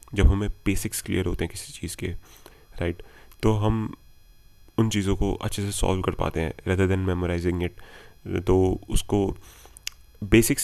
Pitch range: 90-105 Hz